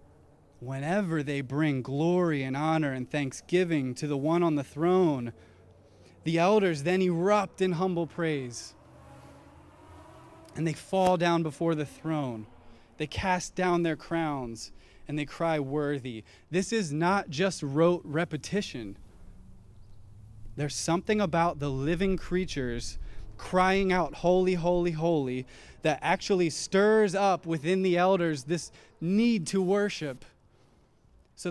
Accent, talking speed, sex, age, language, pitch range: American, 125 wpm, male, 20-39, English, 110-170 Hz